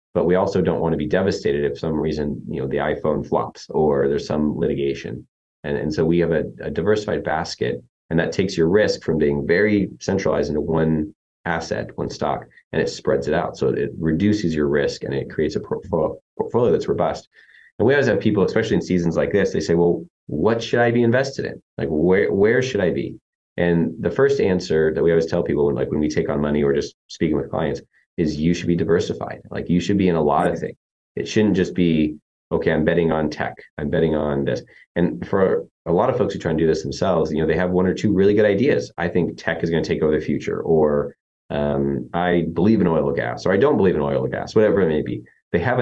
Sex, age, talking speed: male, 30-49, 240 wpm